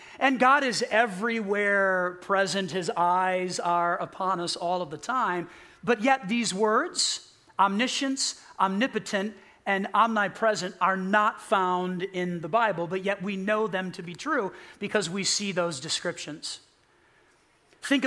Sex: male